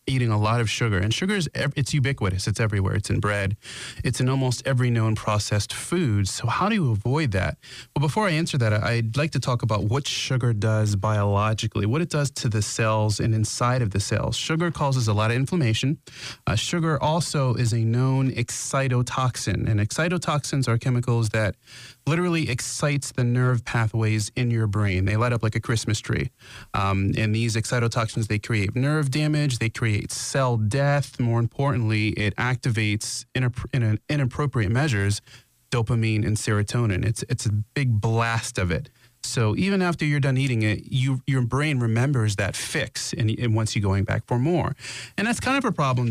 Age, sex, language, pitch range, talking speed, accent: 30-49, male, English, 110-135 Hz, 185 wpm, American